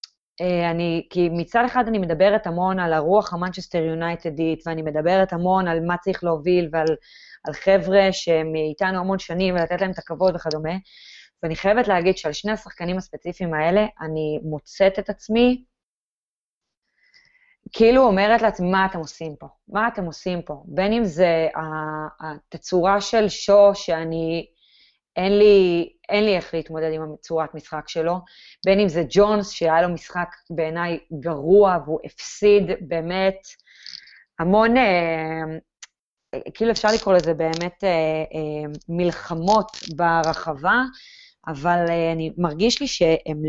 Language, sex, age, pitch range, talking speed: Hebrew, female, 20-39, 165-205 Hz, 135 wpm